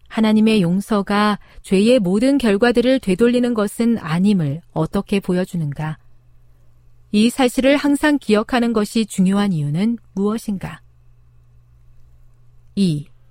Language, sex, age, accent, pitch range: Korean, female, 40-59, native, 155-235 Hz